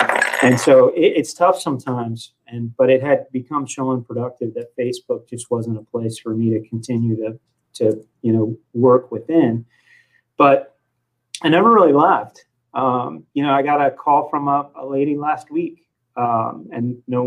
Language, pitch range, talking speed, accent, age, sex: English, 115-140 Hz, 175 wpm, American, 30-49, male